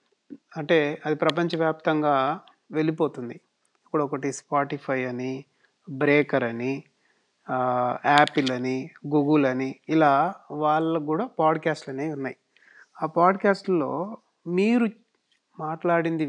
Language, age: Telugu, 30-49